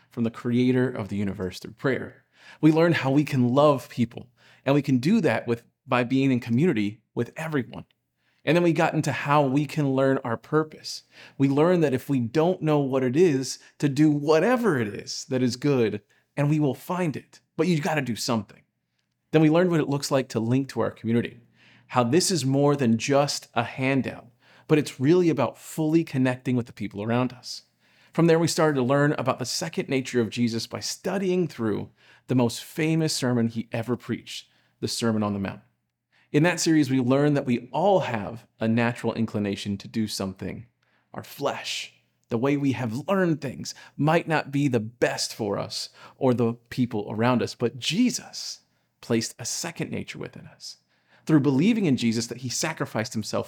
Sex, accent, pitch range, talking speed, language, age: male, American, 115-150 Hz, 195 wpm, English, 40-59